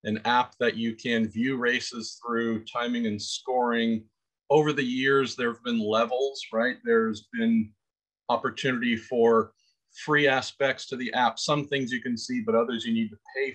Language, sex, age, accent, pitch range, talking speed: English, male, 40-59, American, 115-150 Hz, 175 wpm